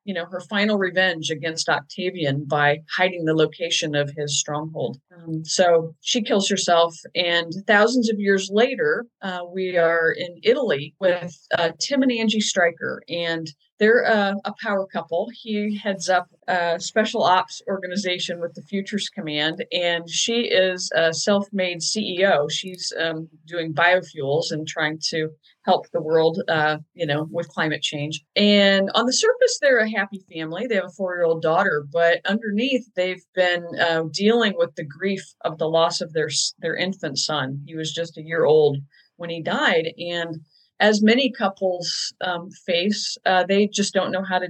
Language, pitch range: English, 160-195 Hz